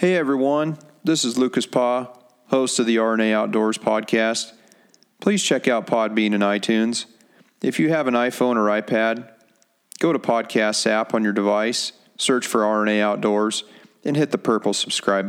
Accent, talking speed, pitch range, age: American, 160 wpm, 105-120 Hz, 40-59